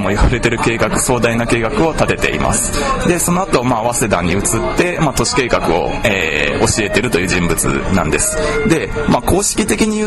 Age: 20-39